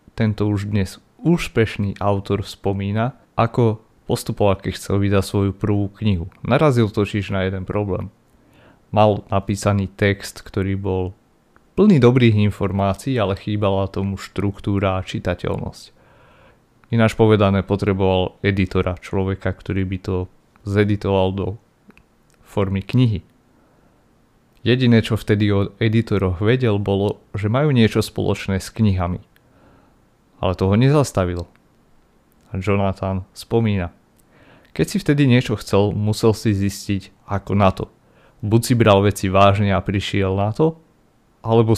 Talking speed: 120 wpm